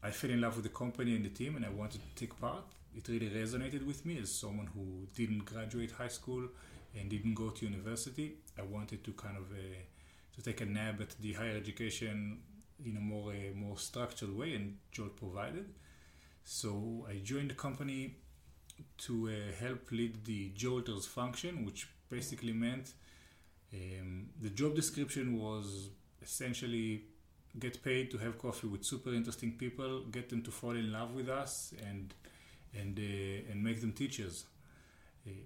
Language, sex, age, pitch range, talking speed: English, male, 30-49, 100-120 Hz, 175 wpm